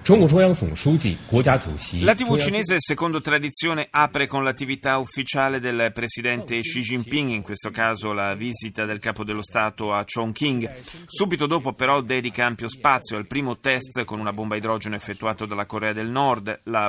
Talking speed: 155 wpm